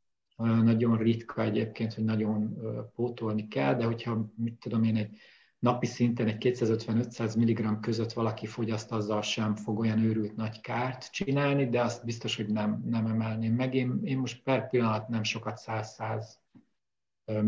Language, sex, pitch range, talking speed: Hungarian, male, 110-130 Hz, 155 wpm